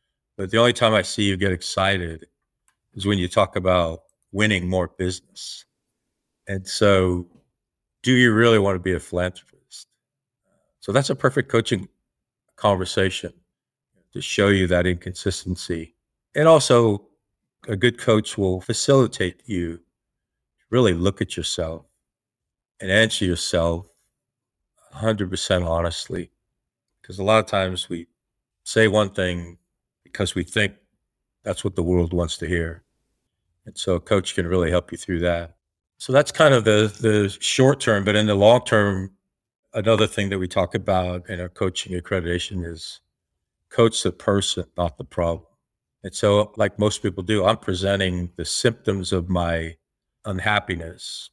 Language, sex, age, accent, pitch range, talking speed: English, male, 50-69, American, 90-105 Hz, 150 wpm